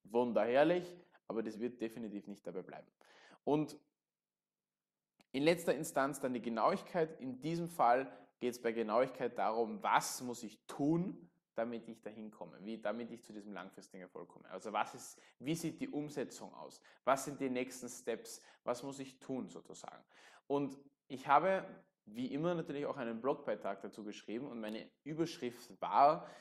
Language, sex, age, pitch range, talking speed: German, male, 20-39, 115-150 Hz, 165 wpm